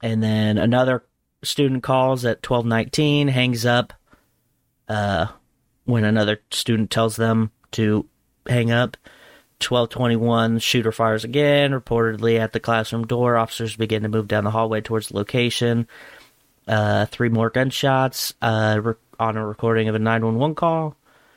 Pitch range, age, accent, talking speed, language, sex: 110-125 Hz, 30-49, American, 140 wpm, English, male